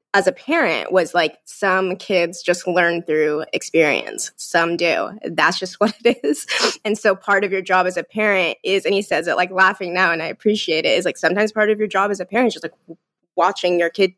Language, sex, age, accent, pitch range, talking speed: English, female, 20-39, American, 175-220 Hz, 235 wpm